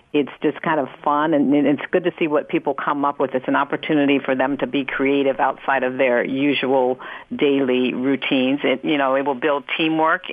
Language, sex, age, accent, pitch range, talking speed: English, female, 50-69, American, 140-170 Hz, 210 wpm